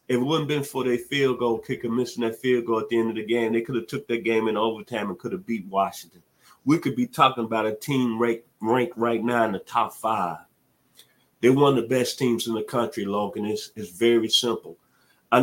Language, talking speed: English, 240 wpm